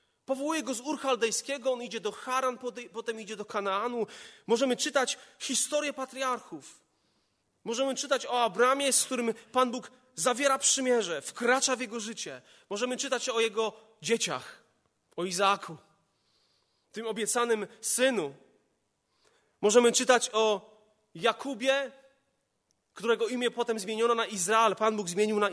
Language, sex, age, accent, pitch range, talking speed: Polish, male, 30-49, native, 190-245 Hz, 125 wpm